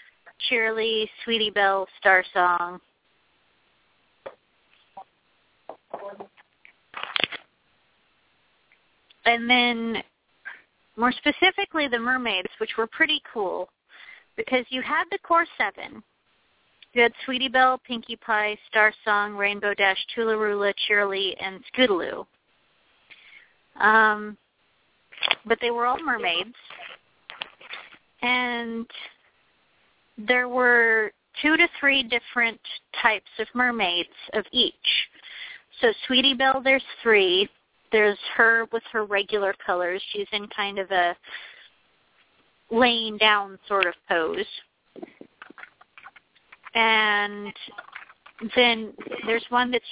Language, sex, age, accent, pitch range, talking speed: English, female, 30-49, American, 210-255 Hz, 95 wpm